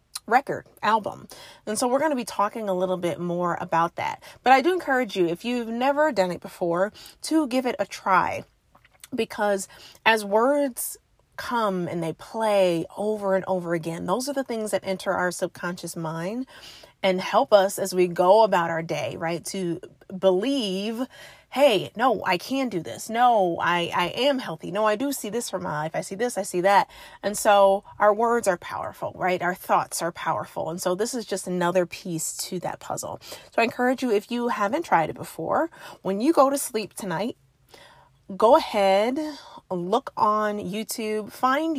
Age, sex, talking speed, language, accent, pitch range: 30-49, female, 190 wpm, English, American, 180-235 Hz